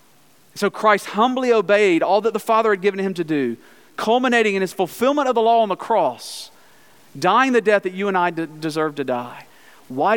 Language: English